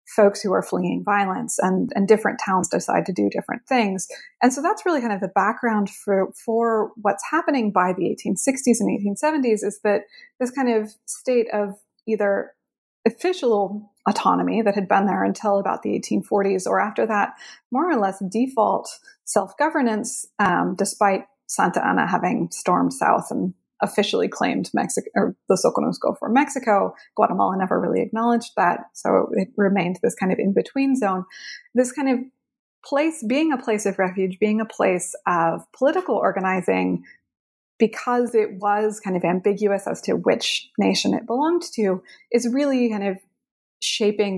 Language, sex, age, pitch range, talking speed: English, female, 20-39, 195-250 Hz, 160 wpm